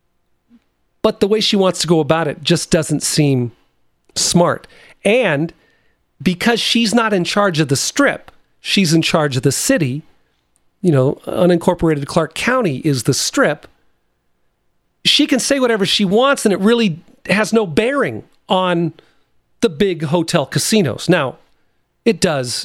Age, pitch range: 40-59, 155-215 Hz